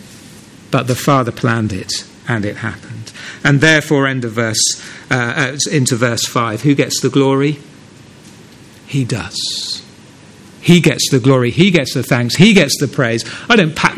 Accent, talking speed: British, 165 wpm